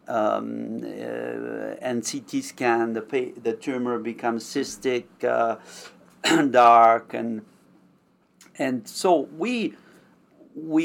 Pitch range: 120-155 Hz